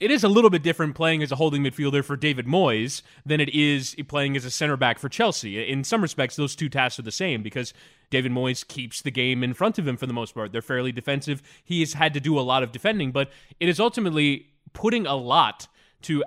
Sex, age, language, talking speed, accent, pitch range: male, 20-39, English, 245 wpm, American, 130-160 Hz